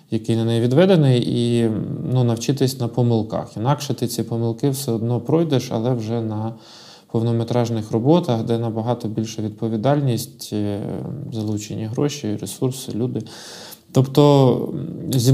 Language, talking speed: Ukrainian, 120 wpm